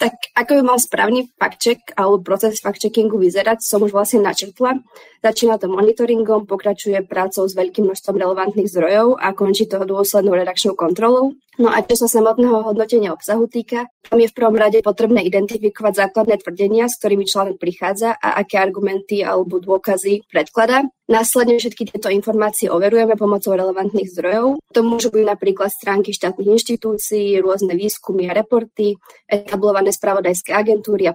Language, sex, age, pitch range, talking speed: Slovak, female, 20-39, 195-225 Hz, 160 wpm